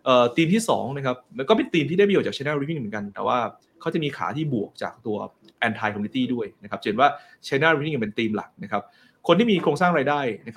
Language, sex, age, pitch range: Thai, male, 20-39, 115-145 Hz